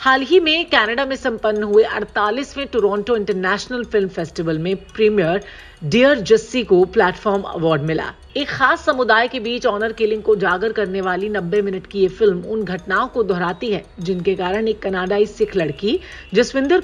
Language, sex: Hindi, female